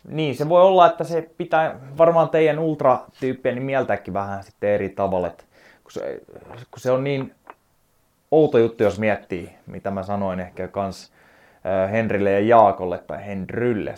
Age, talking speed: 20-39, 160 wpm